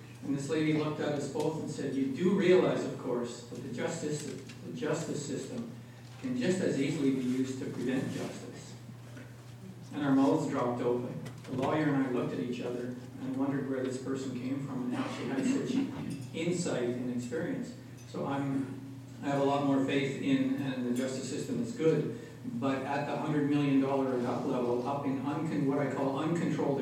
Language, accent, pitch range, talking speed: English, American, 125-140 Hz, 195 wpm